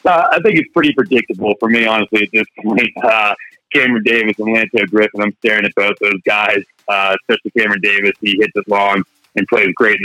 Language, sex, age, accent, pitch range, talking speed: English, male, 30-49, American, 100-120 Hz, 215 wpm